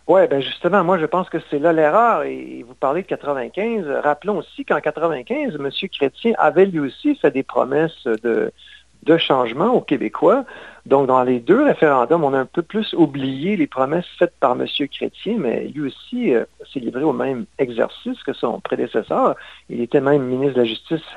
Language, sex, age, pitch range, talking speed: French, male, 50-69, 130-170 Hz, 190 wpm